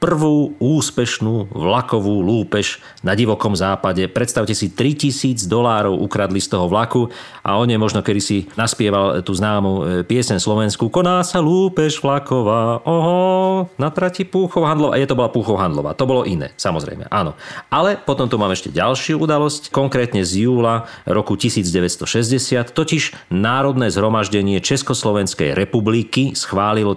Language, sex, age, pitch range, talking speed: Slovak, male, 40-59, 100-130 Hz, 135 wpm